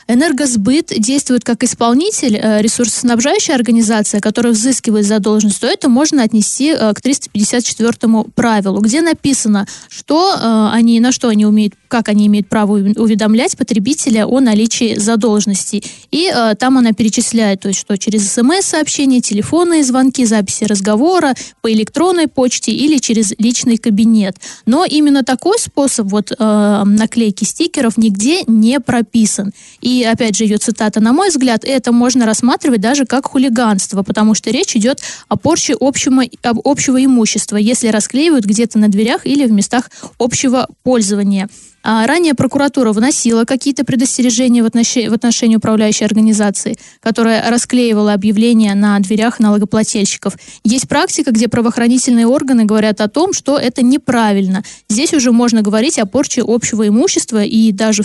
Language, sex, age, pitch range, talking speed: Russian, female, 20-39, 215-260 Hz, 140 wpm